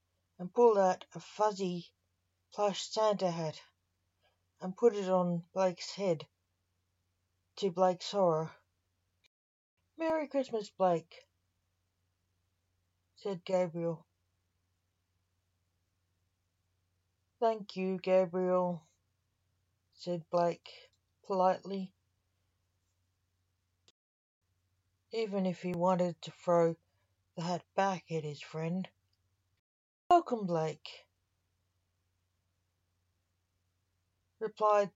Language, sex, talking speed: English, female, 75 wpm